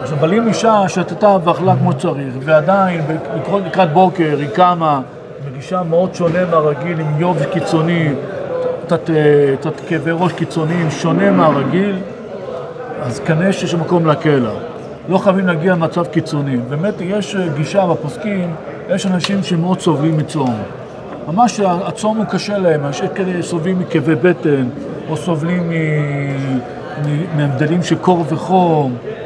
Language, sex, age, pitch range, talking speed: Hebrew, male, 50-69, 155-190 Hz, 135 wpm